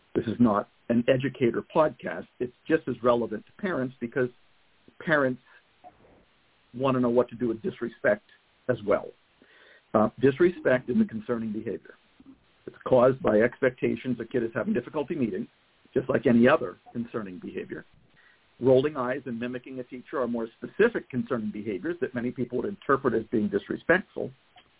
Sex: male